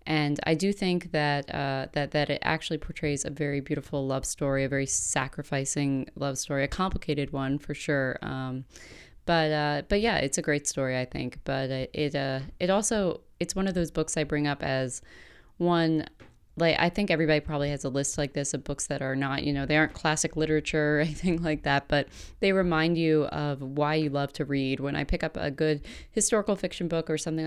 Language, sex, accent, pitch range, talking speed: English, female, American, 140-160 Hz, 215 wpm